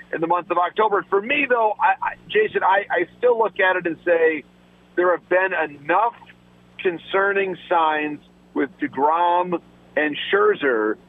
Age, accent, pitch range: 50-69, American, 160-185 Hz